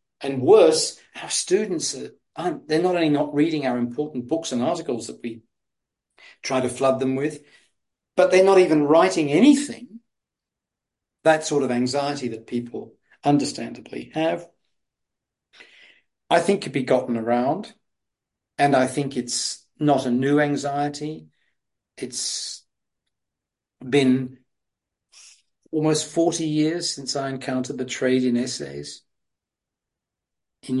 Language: English